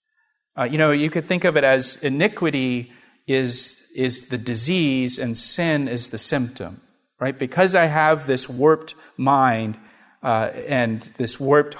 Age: 40-59